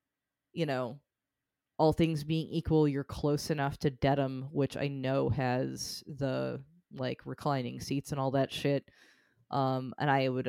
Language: English